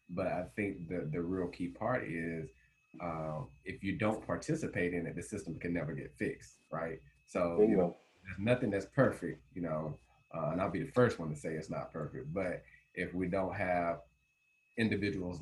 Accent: American